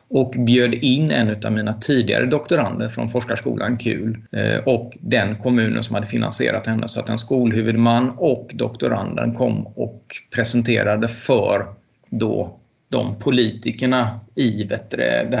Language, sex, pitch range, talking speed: Swedish, male, 115-130 Hz, 130 wpm